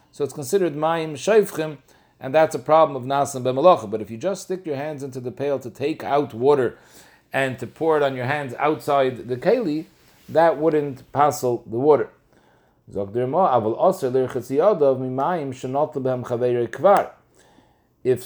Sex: male